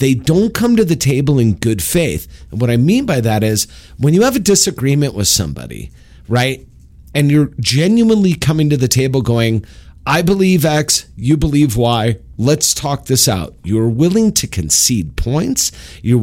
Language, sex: English, male